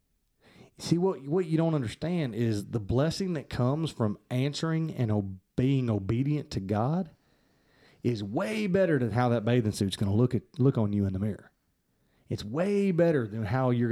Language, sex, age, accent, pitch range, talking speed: English, male, 30-49, American, 110-145 Hz, 175 wpm